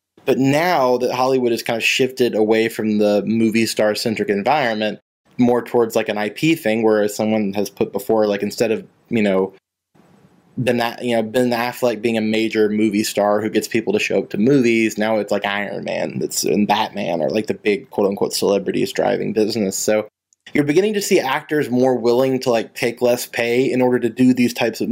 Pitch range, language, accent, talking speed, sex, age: 110-125 Hz, English, American, 205 wpm, male, 20-39